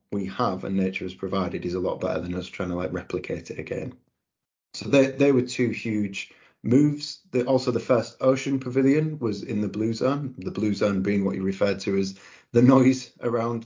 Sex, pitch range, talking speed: male, 95-120 Hz, 210 wpm